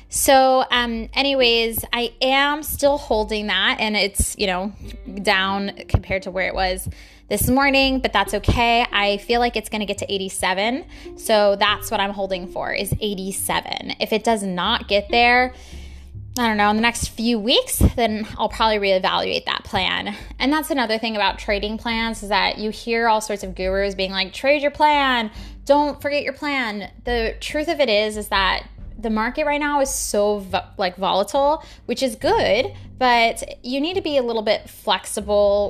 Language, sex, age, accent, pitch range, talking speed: English, female, 10-29, American, 195-250 Hz, 185 wpm